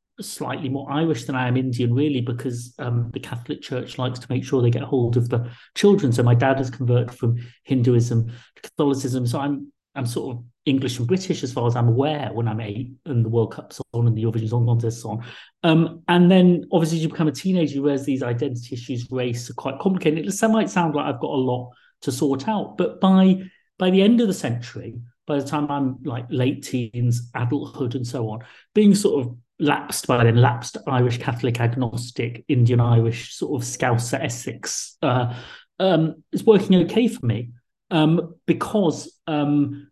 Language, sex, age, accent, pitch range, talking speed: English, male, 40-59, British, 120-150 Hz, 205 wpm